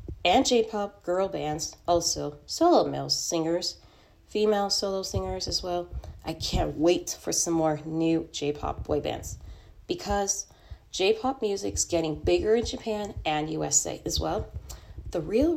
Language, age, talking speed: English, 30-49, 140 wpm